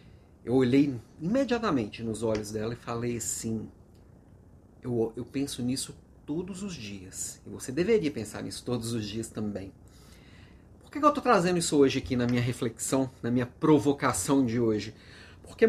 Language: Portuguese